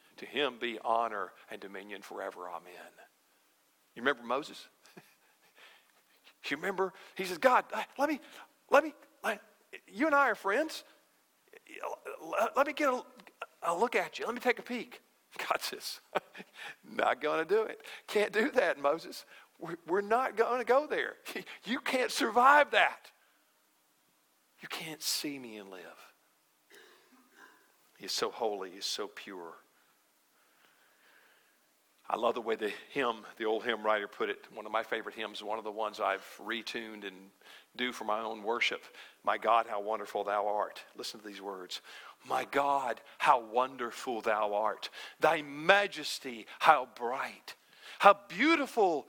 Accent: American